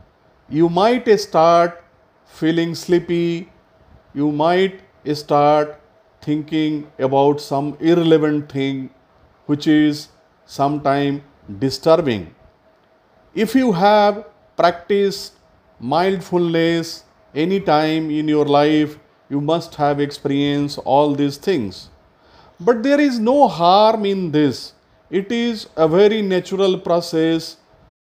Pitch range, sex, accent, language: 145-195 Hz, male, Indian, English